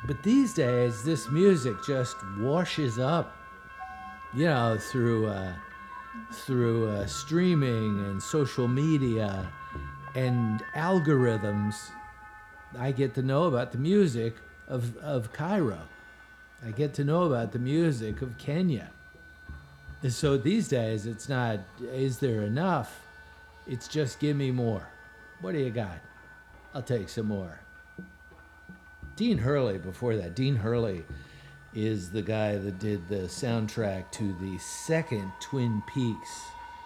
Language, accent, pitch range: English, American, 105-145 Hz